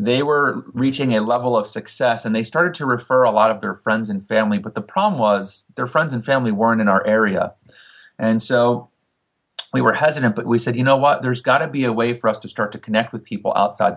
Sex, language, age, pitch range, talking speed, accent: male, English, 30-49, 110-130 Hz, 240 wpm, American